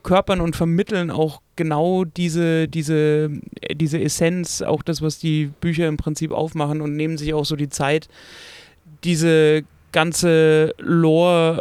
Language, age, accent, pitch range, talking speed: German, 30-49, German, 145-160 Hz, 135 wpm